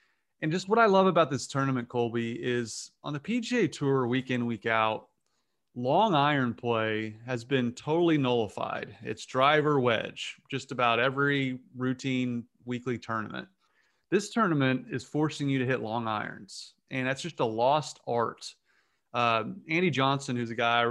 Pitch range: 115-145 Hz